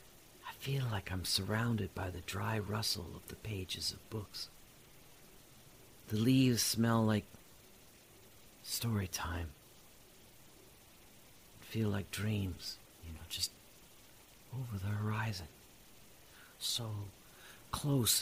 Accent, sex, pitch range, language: American, male, 95-120 Hz, English